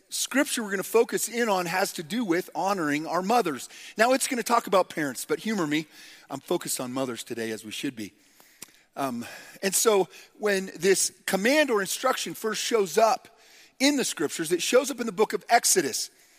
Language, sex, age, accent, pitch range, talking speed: English, male, 40-59, American, 175-235 Hz, 200 wpm